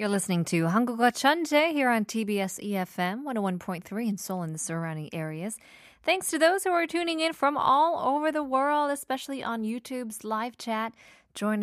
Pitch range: 180-245 Hz